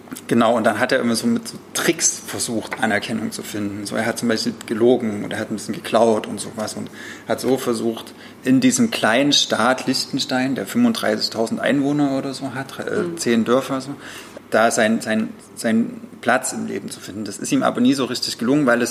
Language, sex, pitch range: German, male, 110-135 Hz